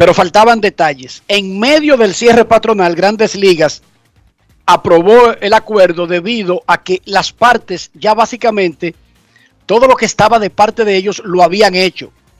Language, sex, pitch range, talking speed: Spanish, male, 170-210 Hz, 150 wpm